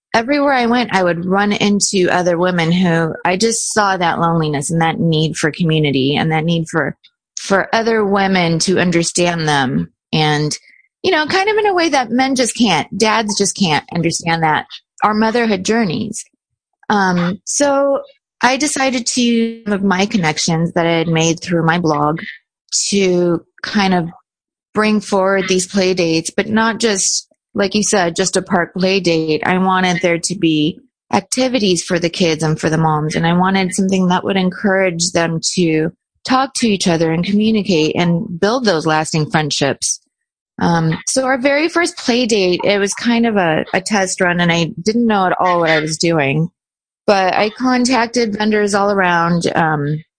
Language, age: English, 30-49